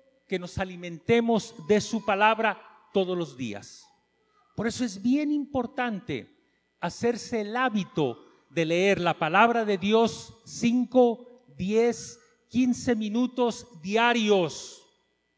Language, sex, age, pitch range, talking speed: English, male, 40-59, 180-240 Hz, 110 wpm